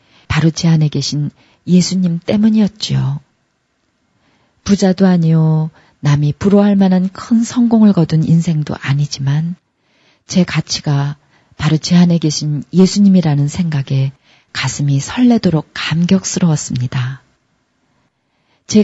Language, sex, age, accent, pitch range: Korean, female, 40-59, native, 145-195 Hz